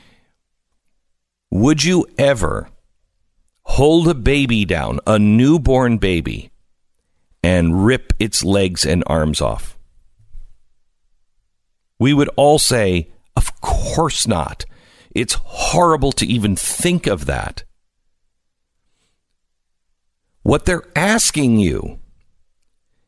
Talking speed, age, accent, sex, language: 90 wpm, 50-69, American, male, English